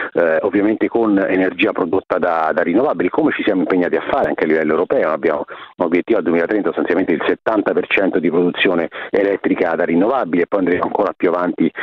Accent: native